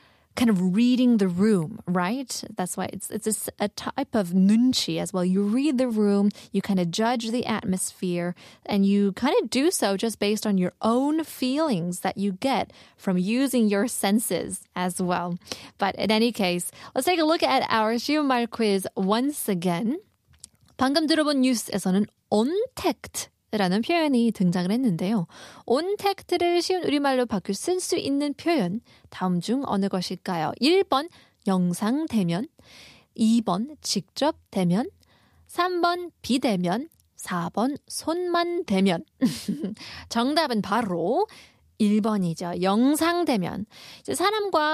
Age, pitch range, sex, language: 20-39, 195-275 Hz, female, Korean